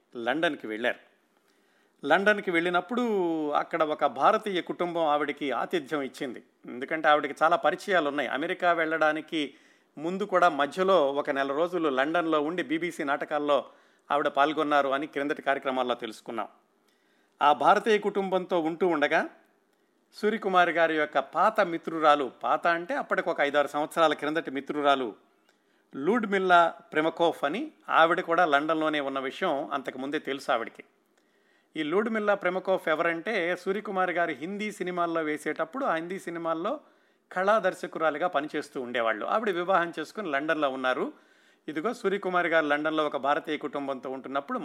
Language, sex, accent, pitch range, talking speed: Telugu, male, native, 145-180 Hz, 125 wpm